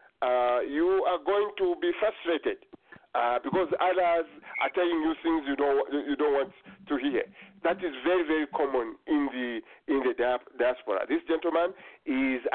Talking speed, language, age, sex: 165 wpm, English, 50-69, male